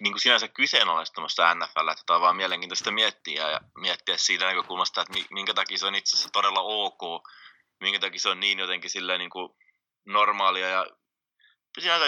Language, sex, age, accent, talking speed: Finnish, male, 20-39, native, 165 wpm